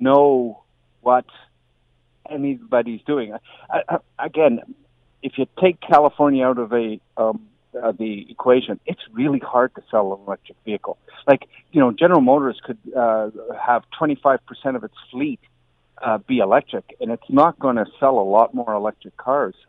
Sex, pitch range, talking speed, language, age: male, 115-150 Hz, 165 wpm, English, 50-69